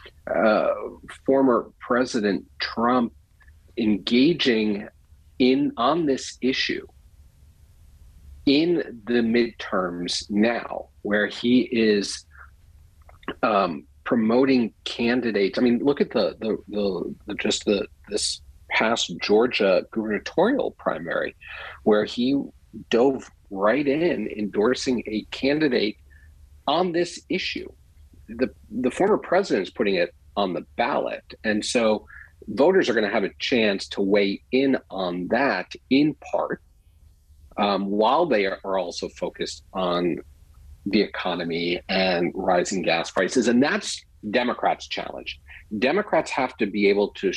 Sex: male